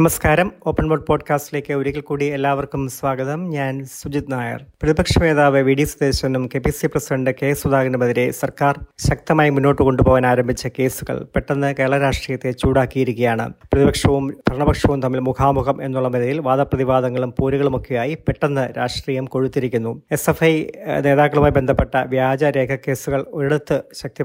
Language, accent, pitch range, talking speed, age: Malayalam, native, 130-145 Hz, 110 wpm, 30-49